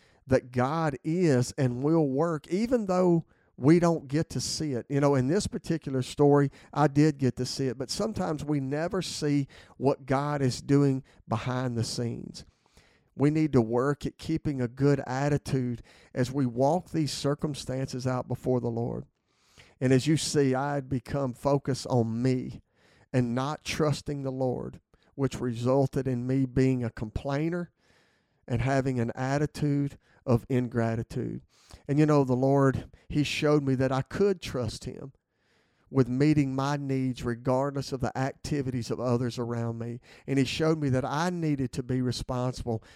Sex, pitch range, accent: male, 120-145 Hz, American